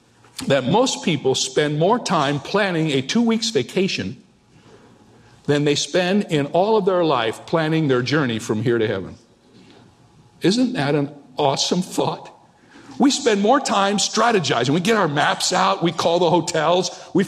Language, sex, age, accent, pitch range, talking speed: English, male, 50-69, American, 145-215 Hz, 155 wpm